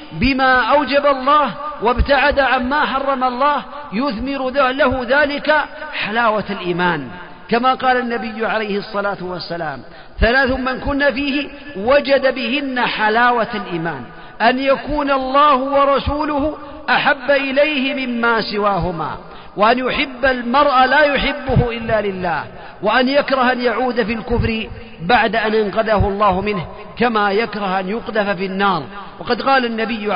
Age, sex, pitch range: 50-69, male, 210-265 Hz